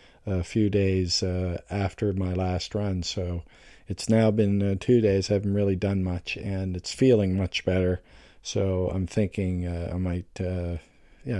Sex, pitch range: male, 90-100 Hz